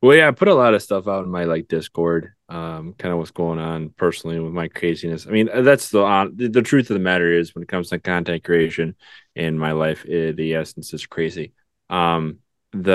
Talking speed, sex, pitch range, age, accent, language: 235 wpm, male, 85-95 Hz, 20-39, American, English